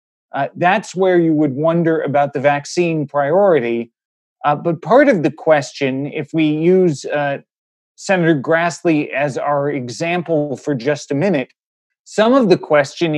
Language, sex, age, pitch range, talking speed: English, male, 30-49, 150-185 Hz, 150 wpm